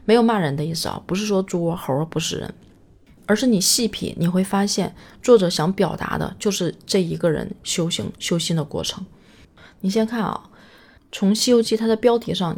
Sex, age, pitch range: female, 20-39, 160-200 Hz